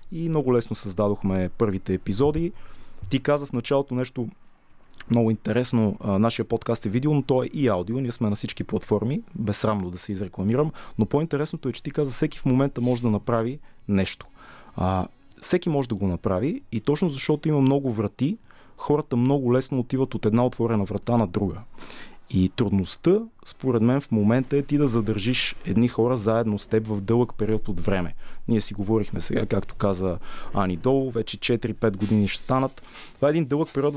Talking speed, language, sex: 185 wpm, Bulgarian, male